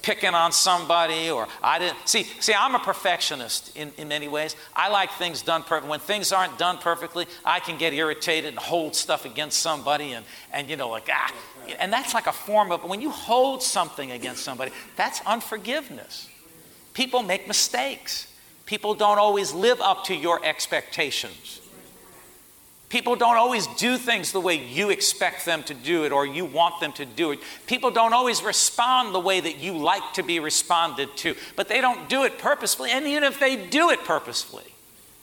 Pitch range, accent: 165-225 Hz, American